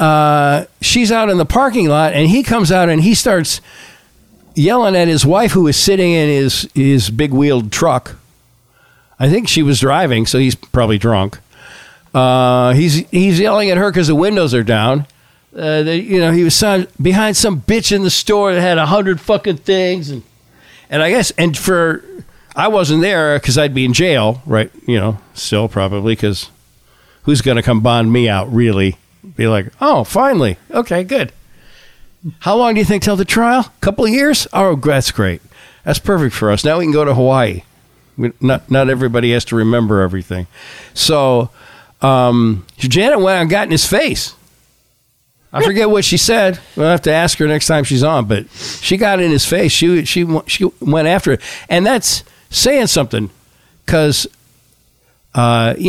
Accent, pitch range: American, 120-185 Hz